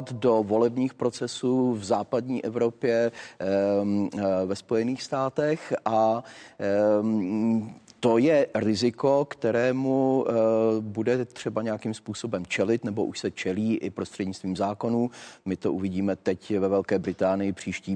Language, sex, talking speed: Czech, male, 115 wpm